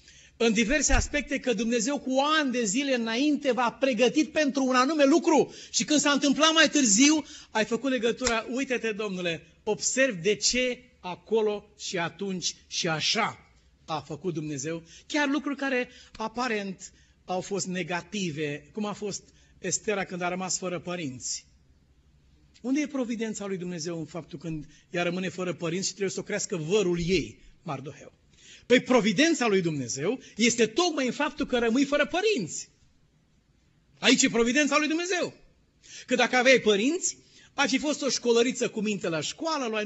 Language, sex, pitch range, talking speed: Romanian, male, 180-265 Hz, 160 wpm